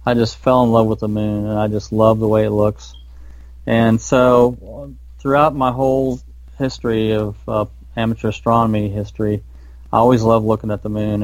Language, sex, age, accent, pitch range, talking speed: English, male, 30-49, American, 105-115 Hz, 180 wpm